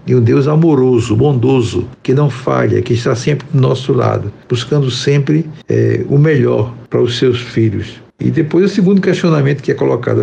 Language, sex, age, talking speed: Portuguese, male, 60-79, 175 wpm